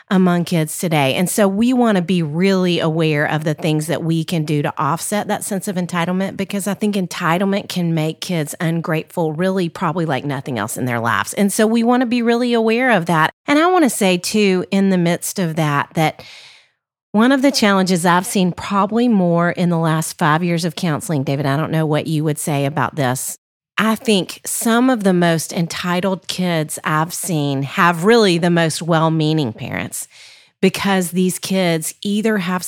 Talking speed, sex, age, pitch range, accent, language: 200 wpm, female, 40-59, 160-200 Hz, American, English